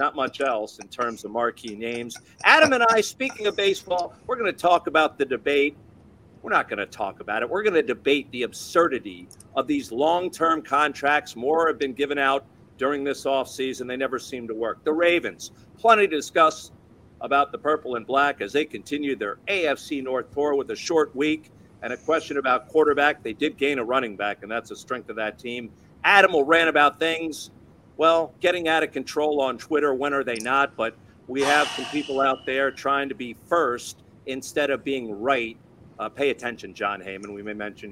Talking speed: 205 wpm